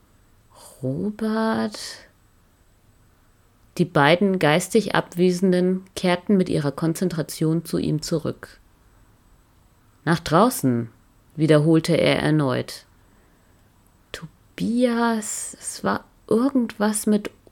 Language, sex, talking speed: German, female, 75 wpm